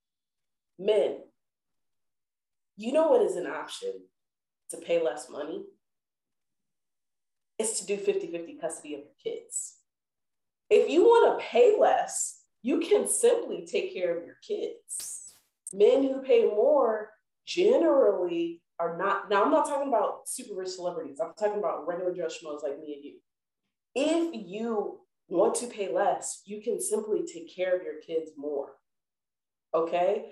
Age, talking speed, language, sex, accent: 30-49, 145 wpm, English, female, American